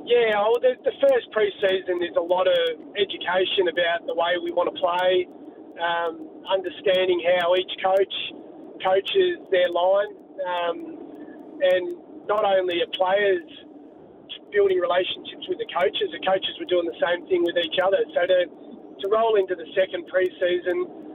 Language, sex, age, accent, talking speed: English, male, 30-49, Australian, 155 wpm